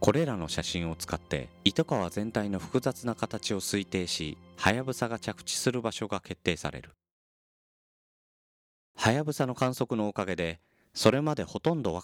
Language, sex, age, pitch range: Japanese, male, 40-59, 75-120 Hz